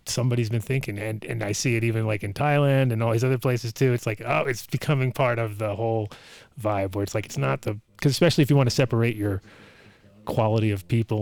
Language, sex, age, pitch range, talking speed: English, male, 30-49, 110-130 Hz, 240 wpm